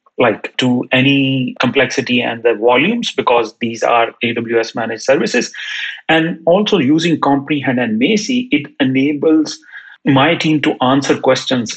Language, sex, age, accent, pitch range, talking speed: English, male, 40-59, Indian, 125-140 Hz, 135 wpm